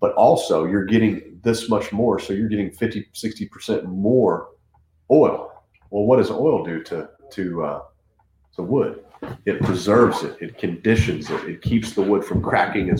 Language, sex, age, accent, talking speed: English, male, 40-59, American, 175 wpm